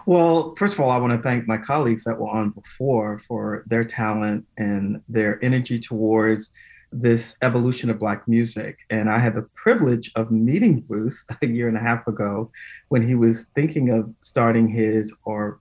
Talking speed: 185 wpm